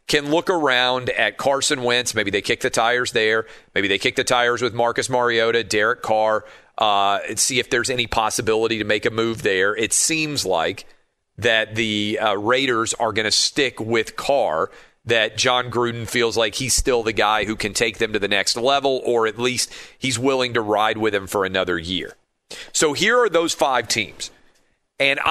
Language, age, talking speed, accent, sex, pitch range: English, 40-59, 195 wpm, American, male, 110-145 Hz